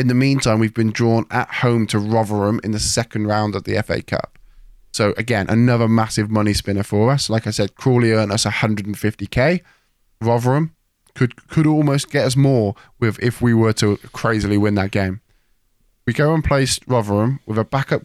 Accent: British